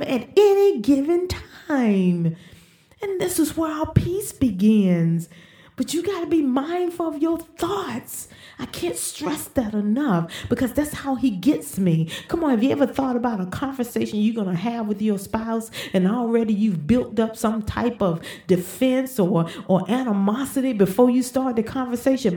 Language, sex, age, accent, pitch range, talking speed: English, female, 40-59, American, 200-290 Hz, 170 wpm